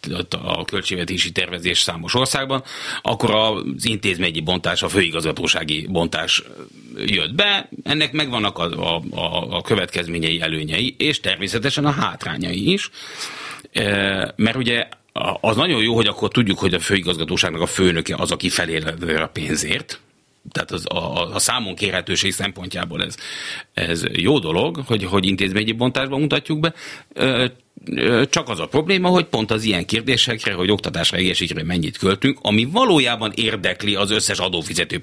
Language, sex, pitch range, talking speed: Hungarian, male, 90-125 Hz, 140 wpm